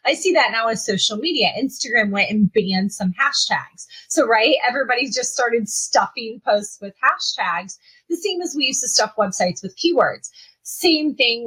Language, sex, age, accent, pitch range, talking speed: English, female, 30-49, American, 200-265 Hz, 180 wpm